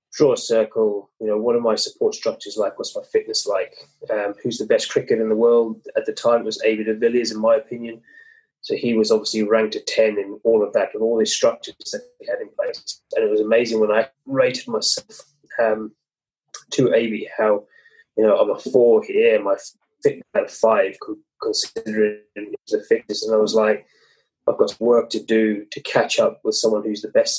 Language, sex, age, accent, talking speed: English, male, 20-39, British, 215 wpm